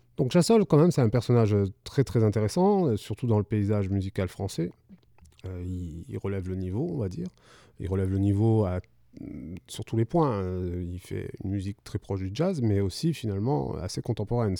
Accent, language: French, French